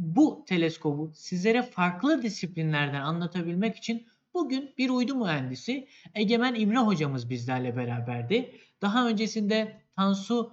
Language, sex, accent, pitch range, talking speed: Turkish, male, native, 160-225 Hz, 110 wpm